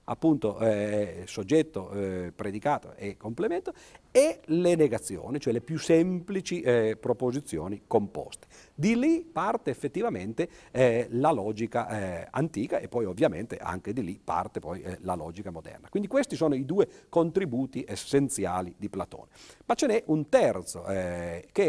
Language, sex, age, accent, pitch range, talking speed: Italian, male, 50-69, native, 110-160 Hz, 150 wpm